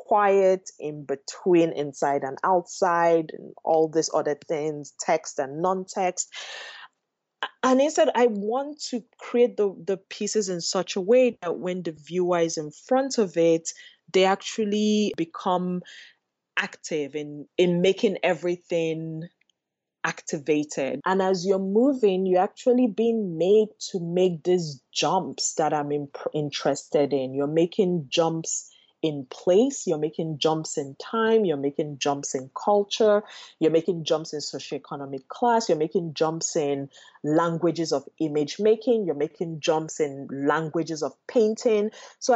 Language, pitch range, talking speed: English, 155-205 Hz, 140 wpm